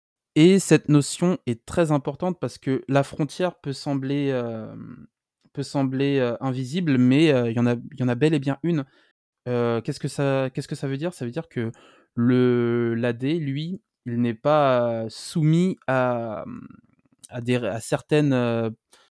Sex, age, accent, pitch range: male, 20-39, French, 115-140 Hz